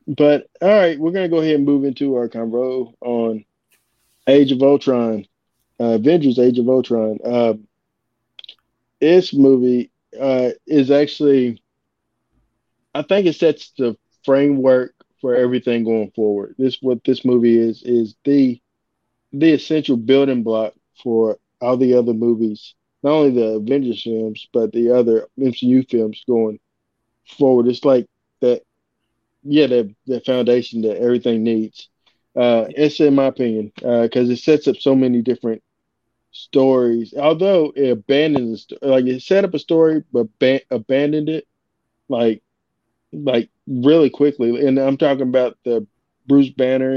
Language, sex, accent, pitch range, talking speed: English, male, American, 115-140 Hz, 140 wpm